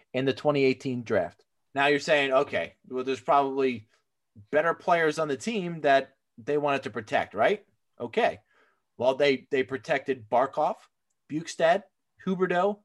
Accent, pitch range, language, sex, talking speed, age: American, 125-175 Hz, English, male, 140 wpm, 30-49